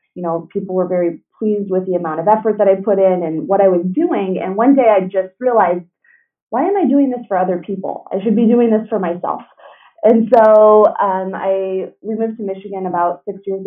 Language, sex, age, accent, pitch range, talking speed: English, female, 20-39, American, 175-200 Hz, 230 wpm